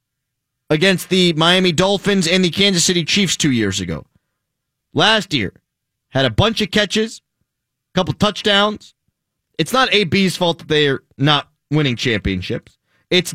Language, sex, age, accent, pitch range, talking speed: English, male, 30-49, American, 125-170 Hz, 145 wpm